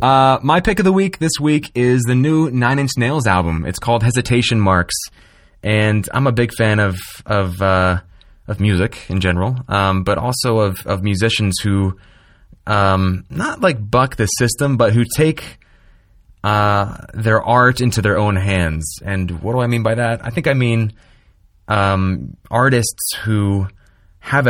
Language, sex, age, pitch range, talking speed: English, male, 20-39, 90-115 Hz, 170 wpm